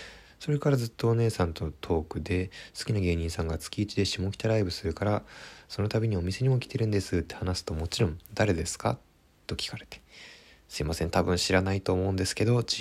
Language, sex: Japanese, male